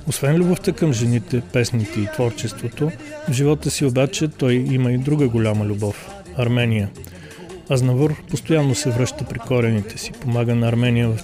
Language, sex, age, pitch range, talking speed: Bulgarian, male, 40-59, 115-140 Hz, 160 wpm